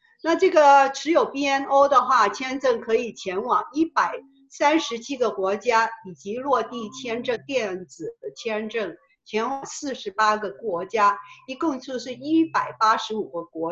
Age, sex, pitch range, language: 50-69, female, 210-340 Hz, Chinese